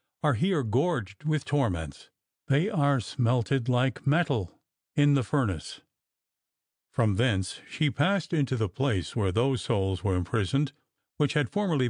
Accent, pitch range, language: American, 105-145 Hz, English